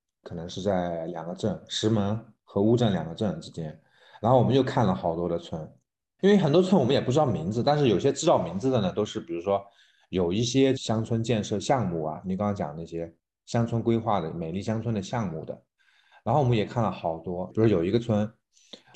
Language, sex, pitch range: Chinese, male, 90-120 Hz